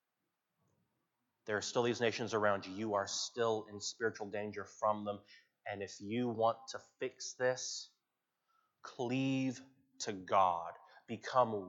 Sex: male